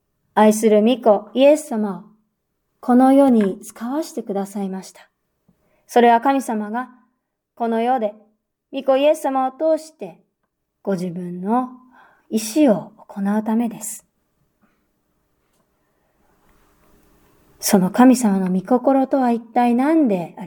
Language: Japanese